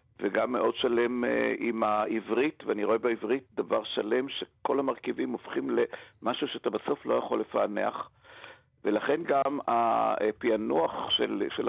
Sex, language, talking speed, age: male, Hebrew, 125 wpm, 50-69